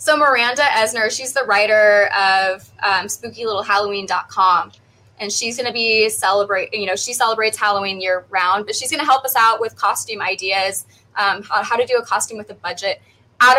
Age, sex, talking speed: 20-39, female, 185 wpm